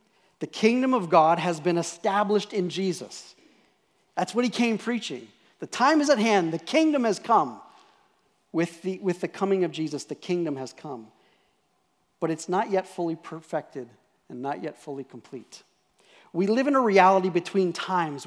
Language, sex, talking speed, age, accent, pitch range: English, male, 170 wpm, 40-59, American, 145-190 Hz